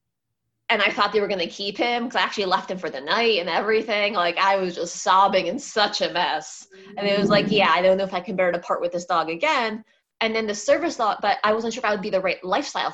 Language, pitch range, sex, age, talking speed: English, 185-230 Hz, female, 20-39, 290 wpm